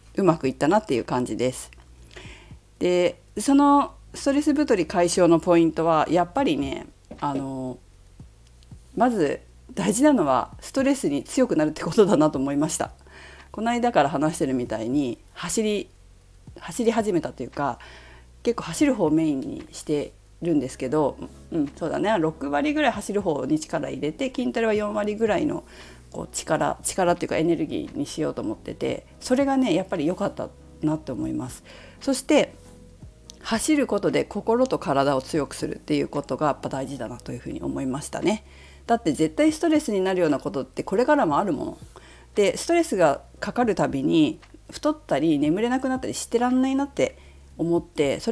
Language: Japanese